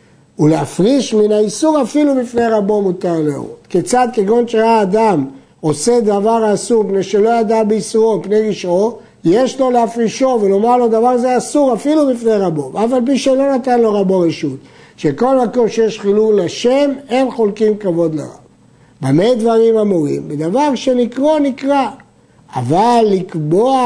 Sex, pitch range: male, 185-245 Hz